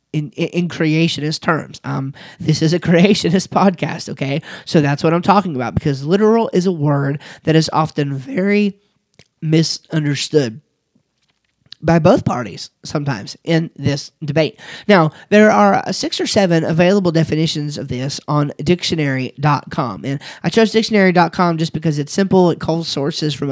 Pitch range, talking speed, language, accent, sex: 145-190 Hz, 150 wpm, English, American, male